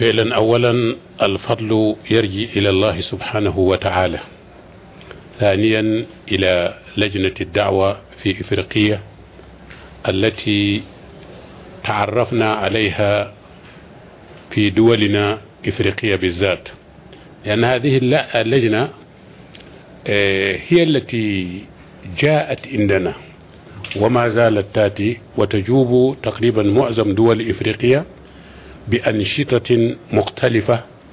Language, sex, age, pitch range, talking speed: Arabic, male, 50-69, 100-120 Hz, 75 wpm